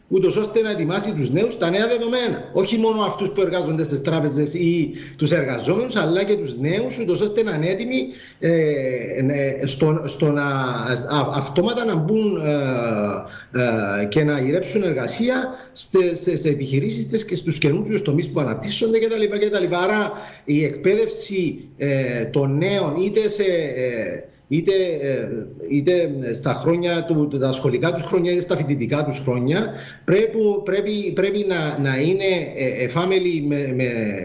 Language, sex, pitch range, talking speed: Greek, male, 135-190 Hz, 145 wpm